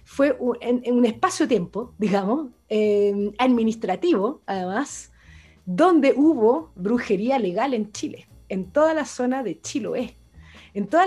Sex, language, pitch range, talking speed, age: female, Spanish, 200-270 Hz, 125 wpm, 30-49